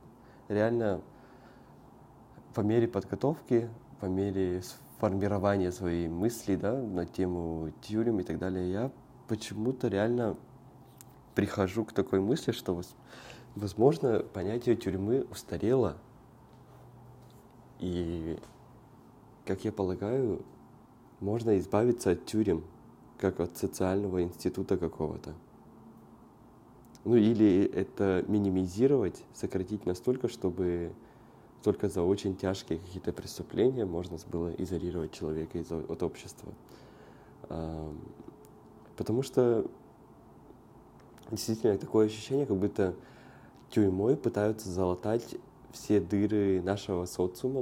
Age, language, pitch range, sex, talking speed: 20-39, Russian, 90-115 Hz, male, 90 wpm